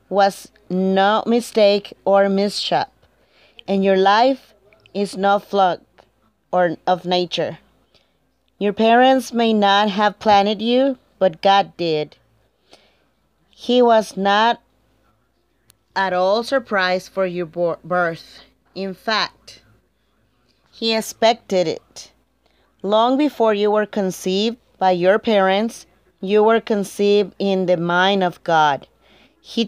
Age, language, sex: 30-49, Spanish, female